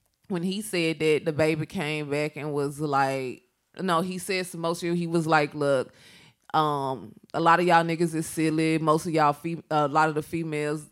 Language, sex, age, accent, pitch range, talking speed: English, female, 20-39, American, 145-170 Hz, 215 wpm